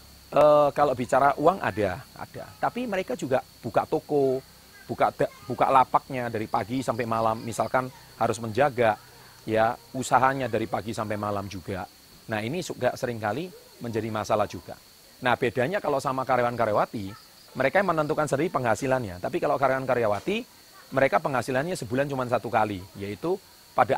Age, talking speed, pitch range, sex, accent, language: 30-49, 145 wpm, 115-150 Hz, male, native, Indonesian